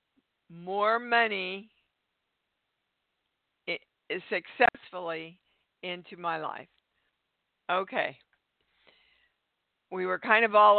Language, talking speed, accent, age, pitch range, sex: English, 70 wpm, American, 50-69, 160-195 Hz, female